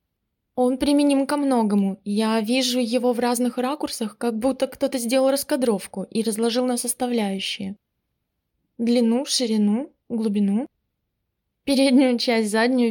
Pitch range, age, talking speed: 220-265 Hz, 20-39, 115 wpm